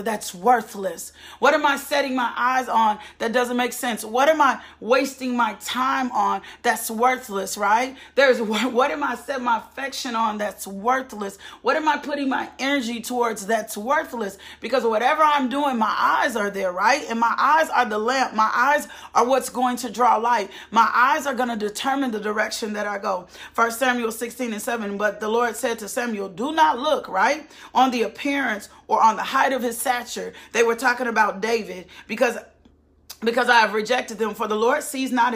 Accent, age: American, 40-59